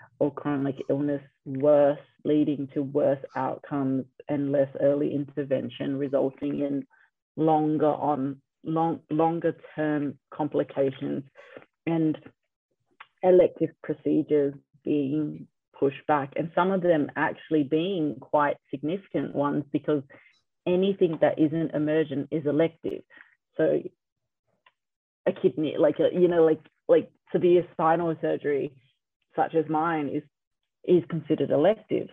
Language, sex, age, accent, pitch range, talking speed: English, female, 30-49, Australian, 145-165 Hz, 115 wpm